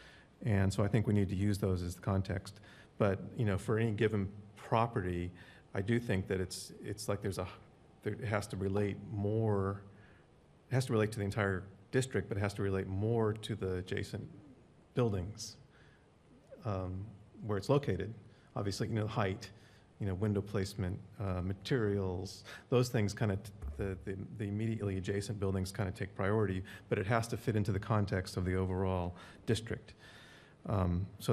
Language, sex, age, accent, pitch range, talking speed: English, male, 40-59, American, 95-110 Hz, 180 wpm